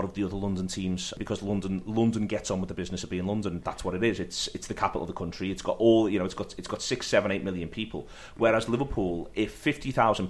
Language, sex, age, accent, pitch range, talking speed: English, male, 30-49, British, 90-105 Hz, 270 wpm